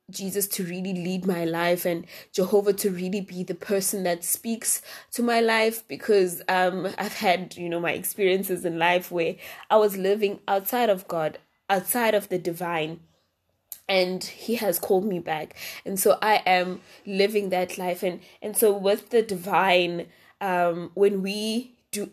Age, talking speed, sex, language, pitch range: 20-39, 170 wpm, female, English, 185-215 Hz